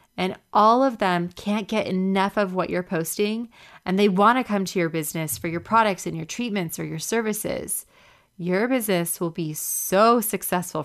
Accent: American